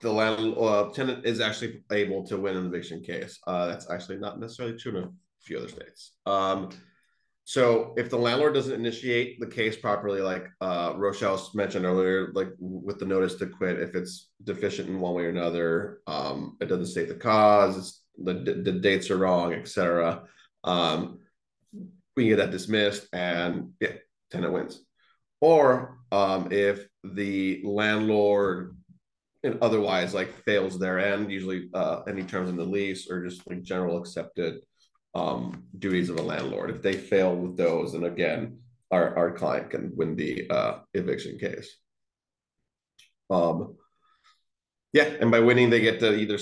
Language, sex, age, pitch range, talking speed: English, male, 30-49, 90-110 Hz, 170 wpm